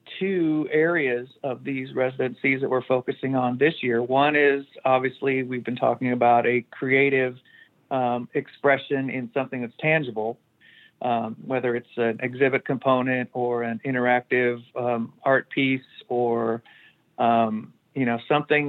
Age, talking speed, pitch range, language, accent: 50-69, 140 wpm, 125-160 Hz, English, American